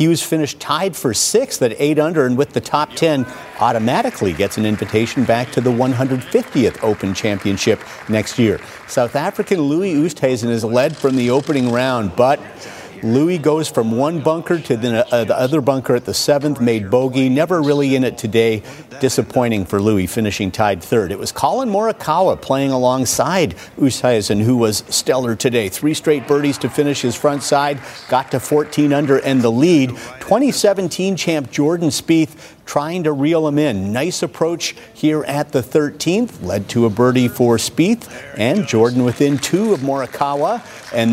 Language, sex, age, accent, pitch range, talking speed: English, male, 50-69, American, 120-150 Hz, 170 wpm